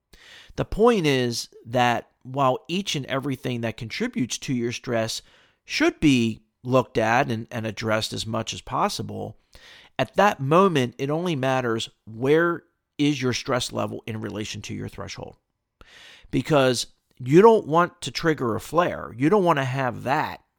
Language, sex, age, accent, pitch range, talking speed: English, male, 40-59, American, 115-140 Hz, 155 wpm